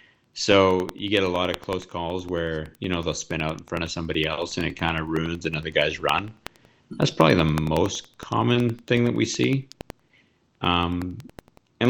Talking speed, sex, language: 190 wpm, male, English